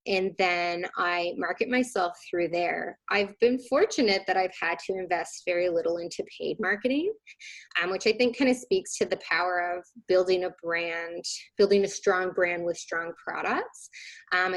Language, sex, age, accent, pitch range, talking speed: English, female, 20-39, American, 180-240 Hz, 175 wpm